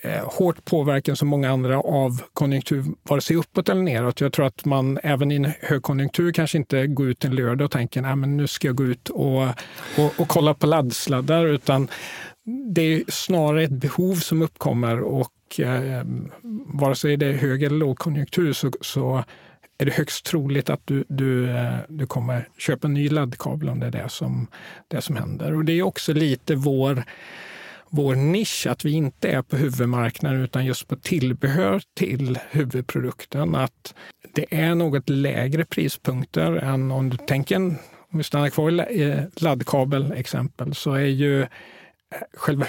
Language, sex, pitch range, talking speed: Swedish, male, 130-155 Hz, 170 wpm